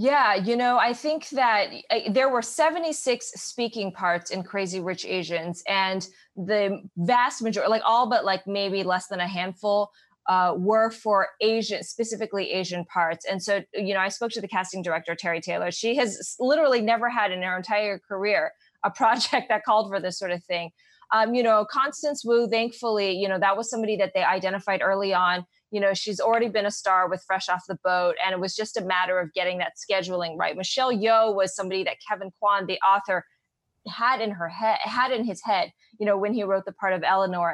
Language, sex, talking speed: English, female, 210 wpm